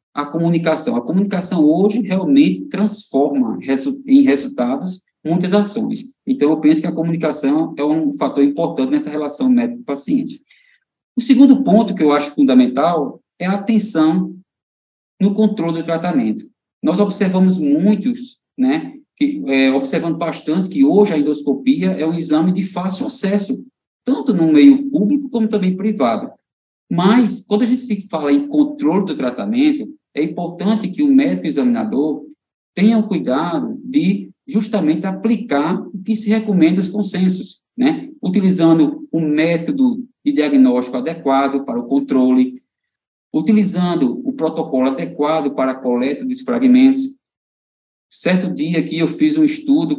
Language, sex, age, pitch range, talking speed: Portuguese, male, 20-39, 155-250 Hz, 145 wpm